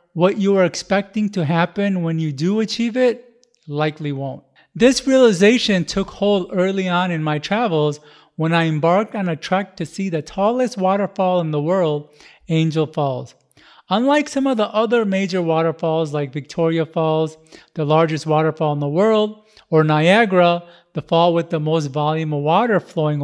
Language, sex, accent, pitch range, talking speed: English, male, American, 155-195 Hz, 170 wpm